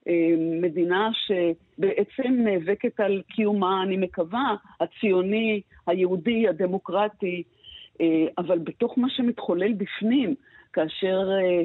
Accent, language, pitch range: native, Hebrew, 175-240 Hz